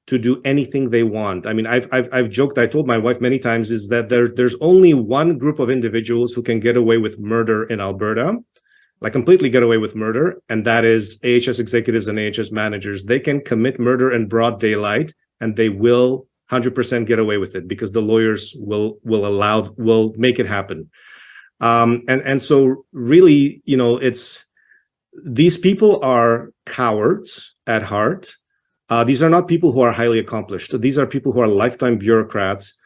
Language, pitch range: English, 115-130 Hz